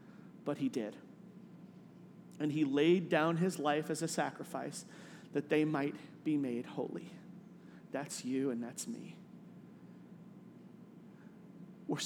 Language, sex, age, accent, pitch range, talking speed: English, male, 40-59, American, 165-210 Hz, 120 wpm